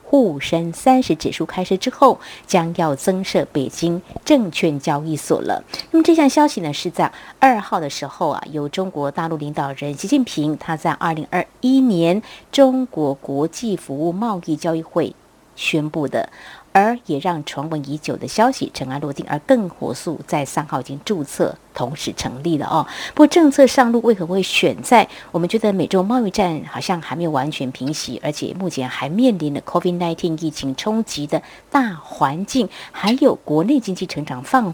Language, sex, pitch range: Chinese, female, 150-235 Hz